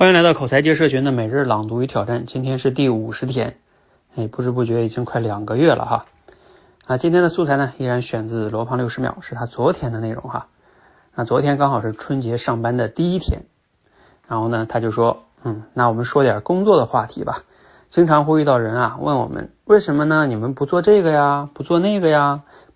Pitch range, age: 120-160 Hz, 20-39